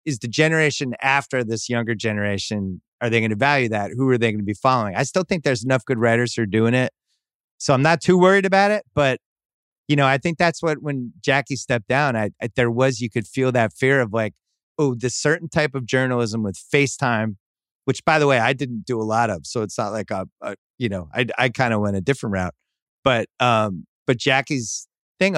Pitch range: 115-140 Hz